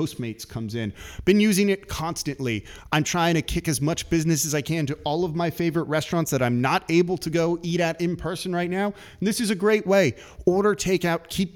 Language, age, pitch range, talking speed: English, 30-49, 125-175 Hz, 240 wpm